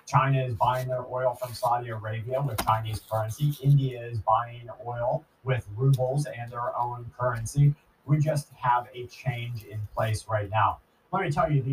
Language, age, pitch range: English, 30-49, 110-135 Hz